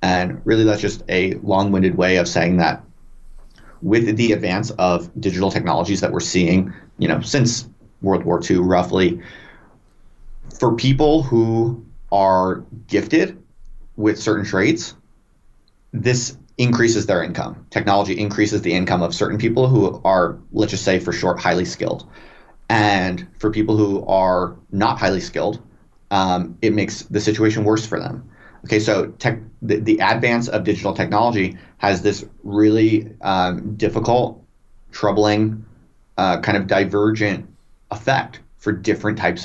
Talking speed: 140 wpm